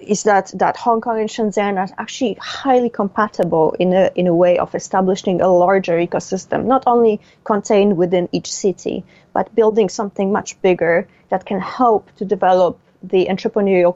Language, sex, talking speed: English, female, 170 wpm